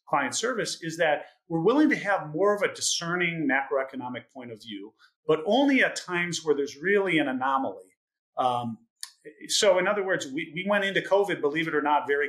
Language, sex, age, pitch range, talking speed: English, male, 40-59, 140-190 Hz, 195 wpm